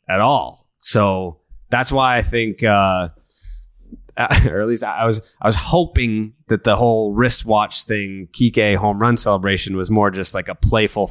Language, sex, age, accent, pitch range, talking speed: English, male, 30-49, American, 90-115 Hz, 170 wpm